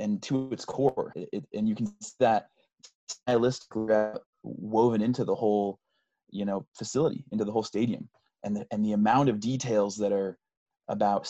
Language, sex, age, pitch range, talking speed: English, male, 30-49, 100-125 Hz, 170 wpm